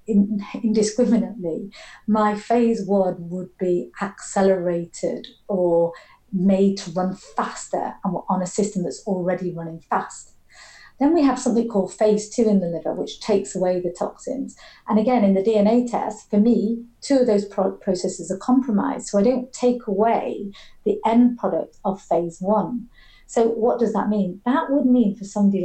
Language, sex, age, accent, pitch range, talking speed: English, female, 40-59, British, 185-230 Hz, 160 wpm